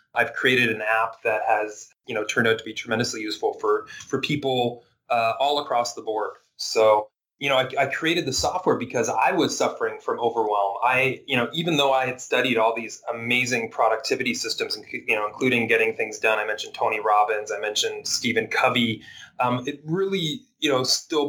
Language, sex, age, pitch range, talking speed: English, male, 30-49, 115-150 Hz, 195 wpm